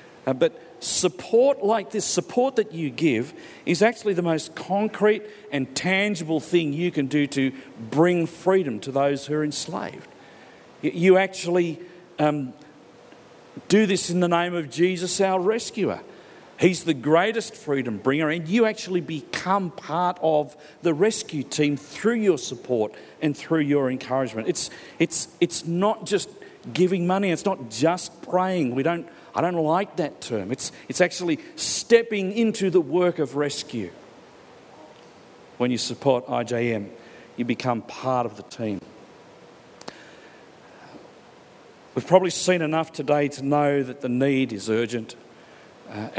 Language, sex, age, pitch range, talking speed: English, male, 50-69, 130-180 Hz, 145 wpm